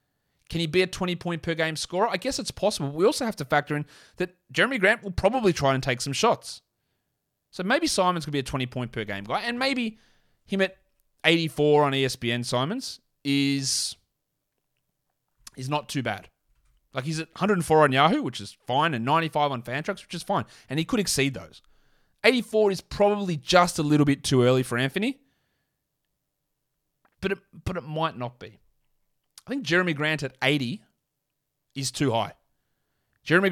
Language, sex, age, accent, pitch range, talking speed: English, male, 30-49, Australian, 130-175 Hz, 175 wpm